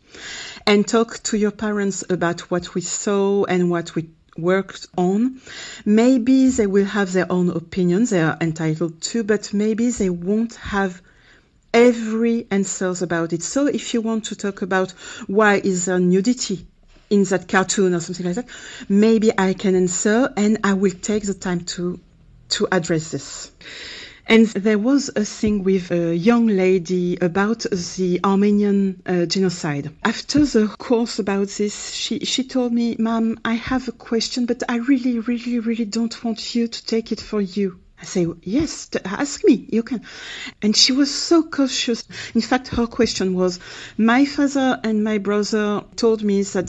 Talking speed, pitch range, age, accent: 170 wpm, 185-230 Hz, 40-59, French